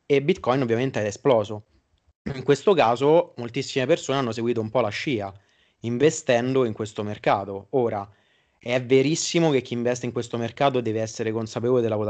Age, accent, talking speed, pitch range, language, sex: 30-49, native, 160 wpm, 110-130 Hz, Italian, male